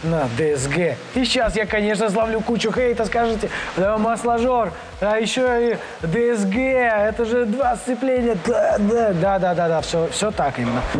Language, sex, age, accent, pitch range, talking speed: Russian, male, 20-39, native, 165-220 Hz, 145 wpm